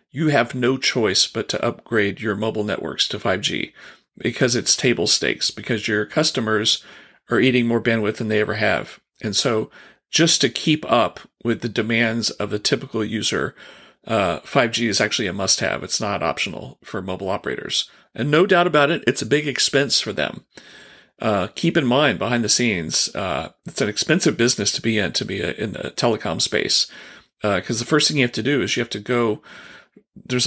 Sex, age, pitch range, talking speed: male, 40-59, 110-130 Hz, 195 wpm